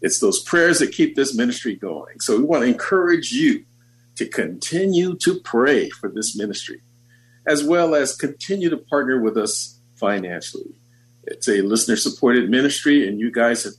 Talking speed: 165 wpm